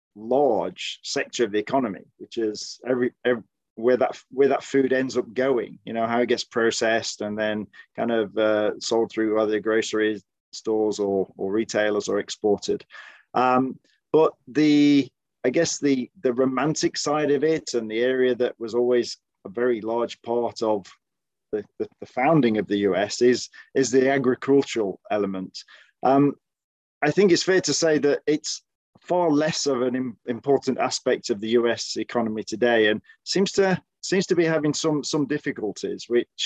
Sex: male